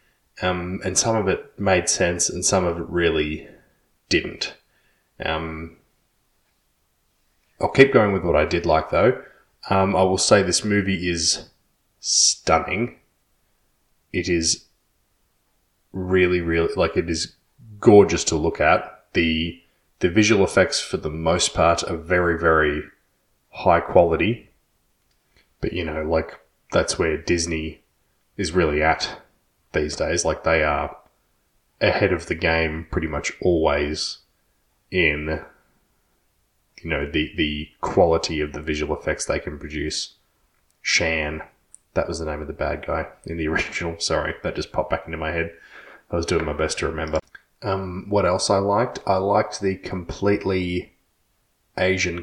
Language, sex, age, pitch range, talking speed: English, male, 20-39, 80-95 Hz, 145 wpm